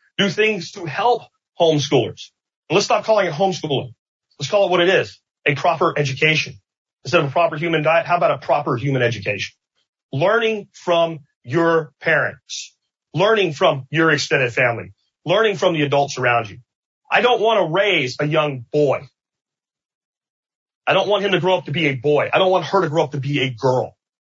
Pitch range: 125-175 Hz